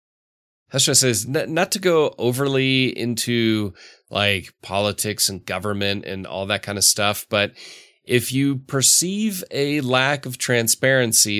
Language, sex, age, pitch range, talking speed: English, male, 30-49, 105-140 Hz, 130 wpm